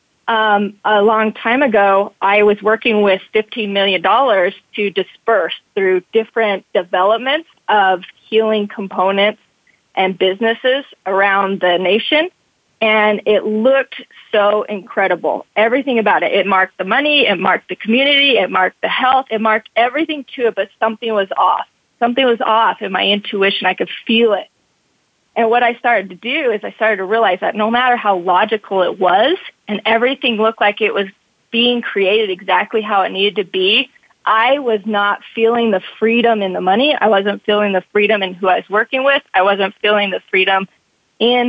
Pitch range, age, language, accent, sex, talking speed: 200-240 Hz, 30-49, English, American, female, 175 wpm